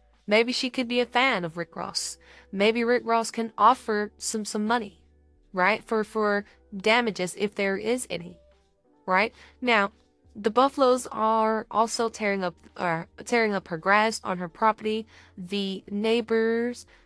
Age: 20-39